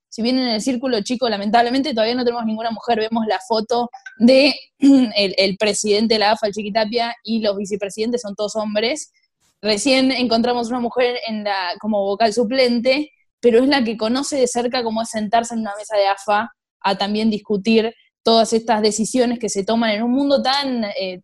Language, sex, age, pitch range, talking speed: Spanish, female, 10-29, 205-245 Hz, 190 wpm